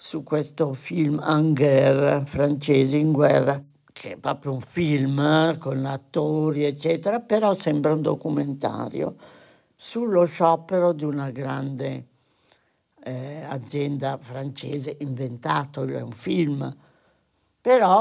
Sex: male